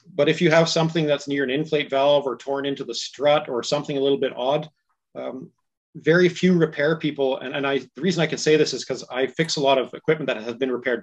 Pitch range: 120-140 Hz